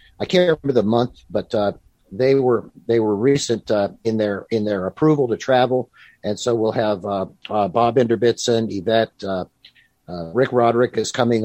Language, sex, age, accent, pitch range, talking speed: English, male, 50-69, American, 105-135 Hz, 185 wpm